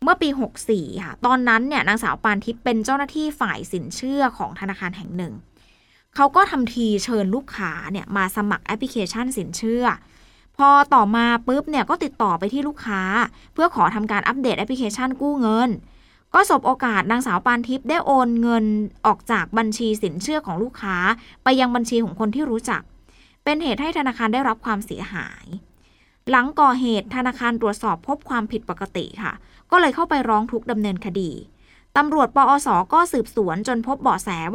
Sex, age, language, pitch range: female, 20-39, Thai, 205-260 Hz